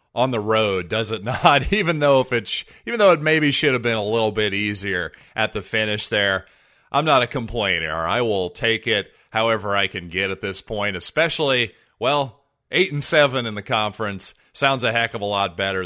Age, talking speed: 30-49, 210 wpm